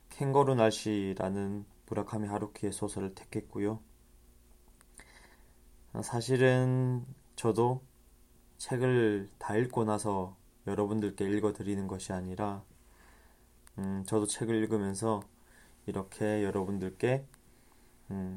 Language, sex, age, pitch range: Korean, male, 20-39, 95-110 Hz